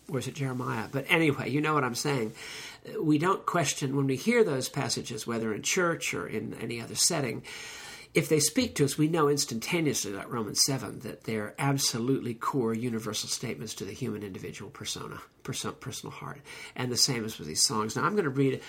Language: English